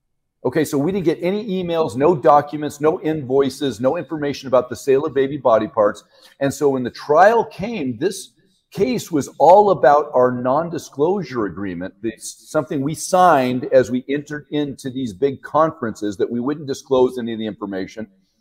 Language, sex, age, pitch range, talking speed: English, male, 40-59, 120-155 Hz, 170 wpm